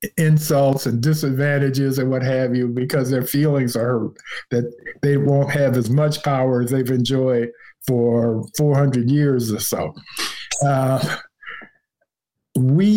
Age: 50-69